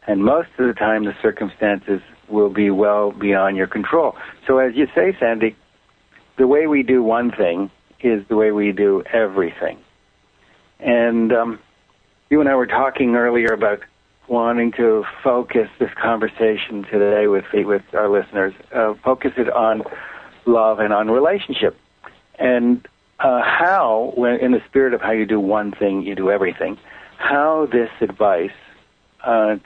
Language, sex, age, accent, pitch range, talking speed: English, male, 60-79, American, 105-125 Hz, 155 wpm